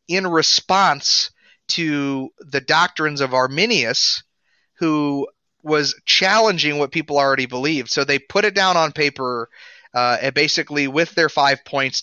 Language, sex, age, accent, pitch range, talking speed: English, male, 30-49, American, 135-170 Hz, 140 wpm